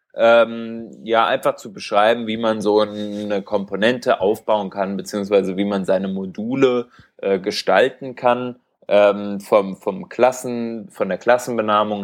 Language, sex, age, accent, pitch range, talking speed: German, male, 20-39, German, 100-130 Hz, 135 wpm